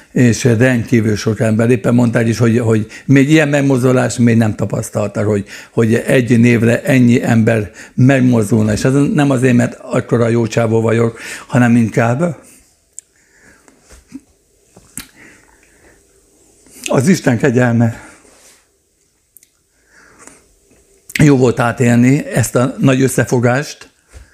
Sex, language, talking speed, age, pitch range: male, Hungarian, 105 wpm, 60-79, 115-130 Hz